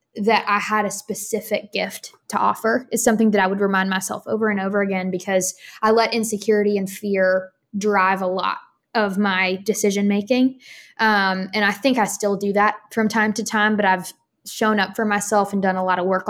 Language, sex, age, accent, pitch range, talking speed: English, female, 10-29, American, 190-215 Hz, 200 wpm